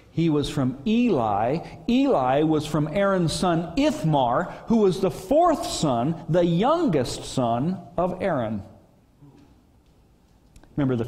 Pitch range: 115-155 Hz